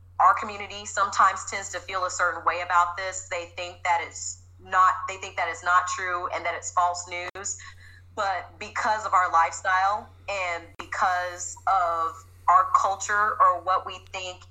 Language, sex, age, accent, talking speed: English, female, 30-49, American, 170 wpm